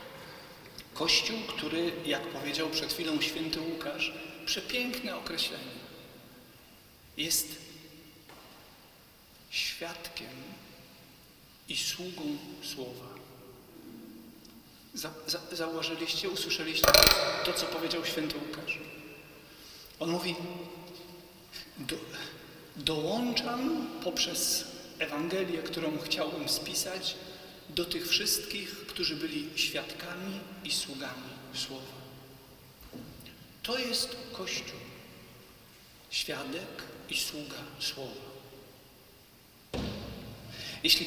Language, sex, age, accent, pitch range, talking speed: Polish, male, 40-59, native, 155-205 Hz, 70 wpm